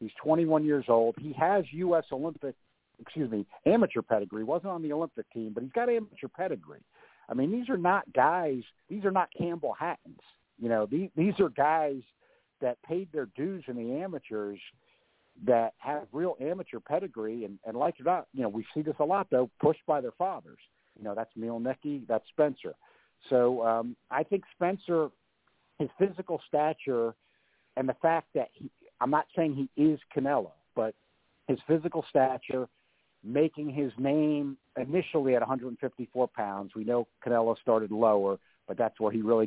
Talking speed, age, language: 180 wpm, 50-69, English